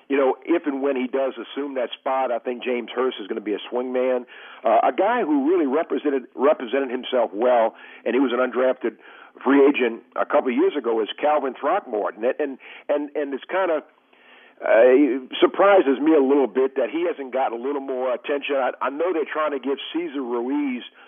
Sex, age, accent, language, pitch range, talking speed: male, 50-69, American, English, 125-150 Hz, 210 wpm